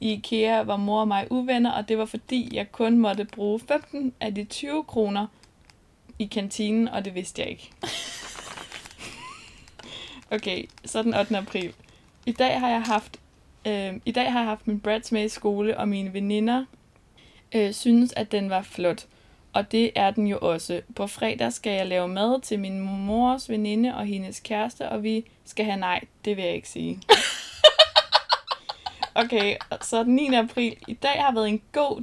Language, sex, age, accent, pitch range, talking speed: Danish, female, 20-39, native, 200-235 Hz, 180 wpm